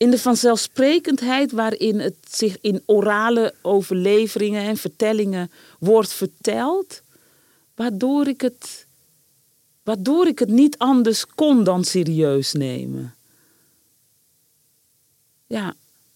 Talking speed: 95 wpm